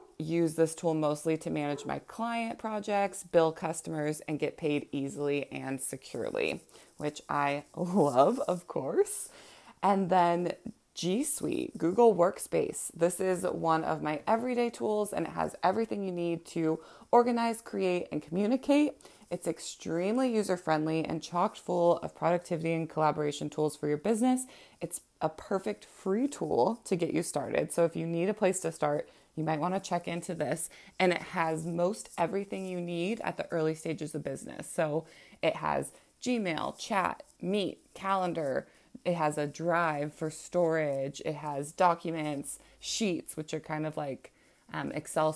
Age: 20-39